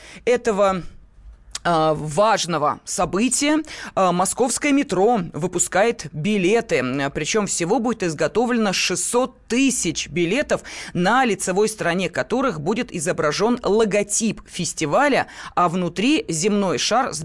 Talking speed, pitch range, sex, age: 100 wpm, 165-225 Hz, female, 20-39